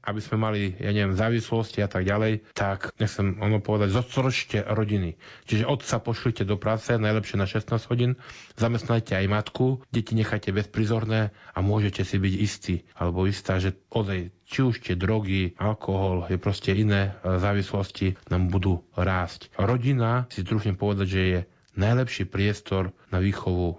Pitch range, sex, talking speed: 100-115 Hz, male, 155 wpm